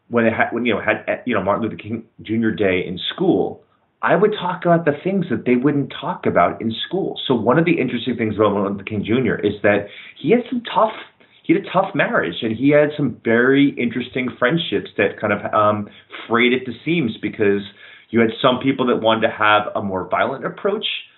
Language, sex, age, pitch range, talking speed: English, male, 30-49, 110-145 Hz, 225 wpm